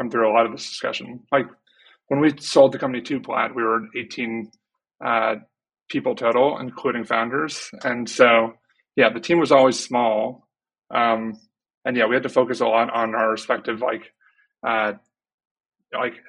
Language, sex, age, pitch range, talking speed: English, male, 20-39, 115-130 Hz, 165 wpm